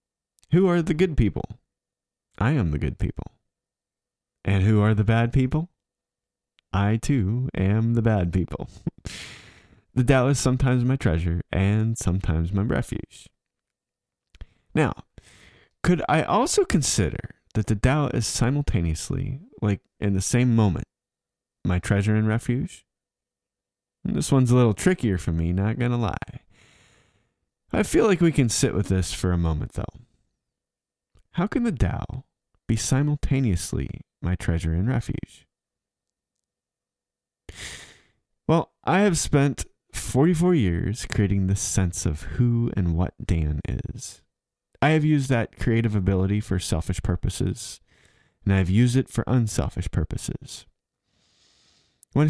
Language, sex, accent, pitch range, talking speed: English, male, American, 90-125 Hz, 135 wpm